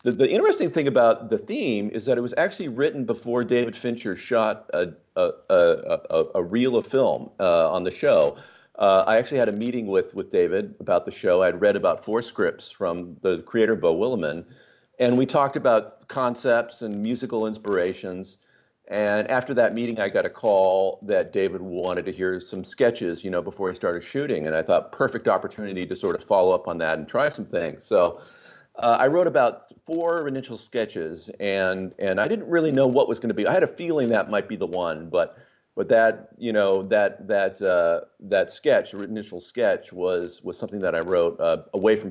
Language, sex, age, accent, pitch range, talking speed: English, male, 40-59, American, 100-140 Hz, 205 wpm